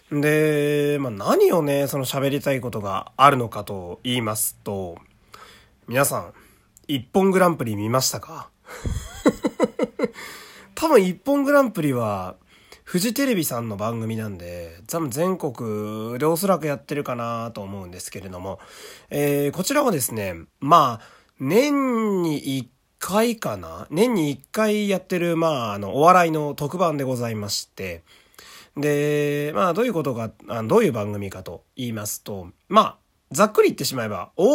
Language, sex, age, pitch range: Japanese, male, 30-49, 110-180 Hz